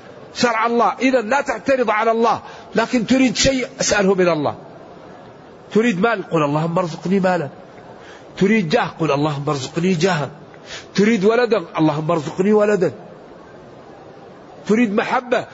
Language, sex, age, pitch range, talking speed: Arabic, male, 50-69, 180-235 Hz, 125 wpm